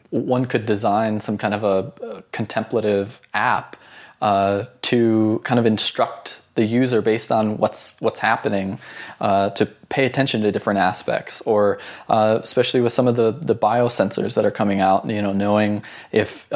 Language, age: English, 20-39